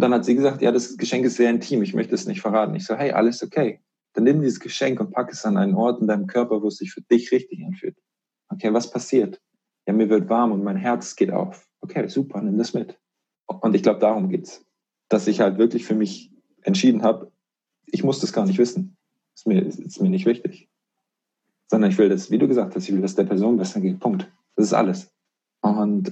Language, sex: German, male